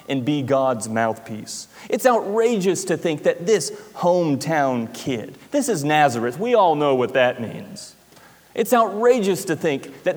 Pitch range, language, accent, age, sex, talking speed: 135-200 Hz, English, American, 30-49, male, 155 wpm